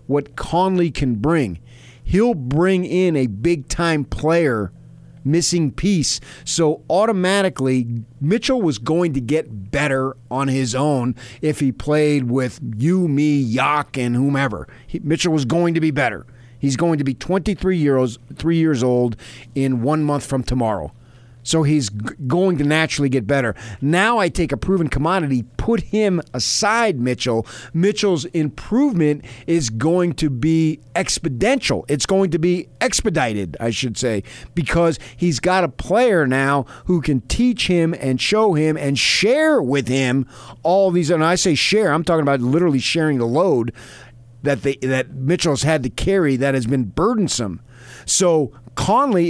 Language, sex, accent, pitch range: English, male, American, 125-170 Hz